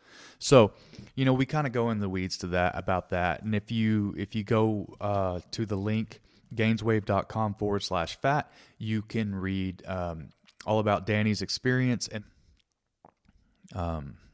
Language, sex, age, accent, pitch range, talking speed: English, male, 30-49, American, 85-105 Hz, 160 wpm